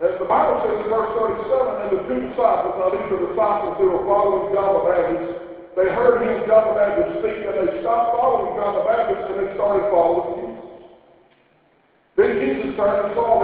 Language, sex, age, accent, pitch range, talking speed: English, male, 50-69, American, 185-250 Hz, 200 wpm